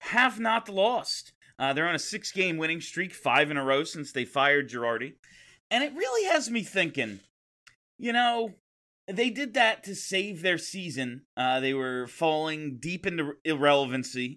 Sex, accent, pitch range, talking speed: male, American, 150-230 Hz, 165 wpm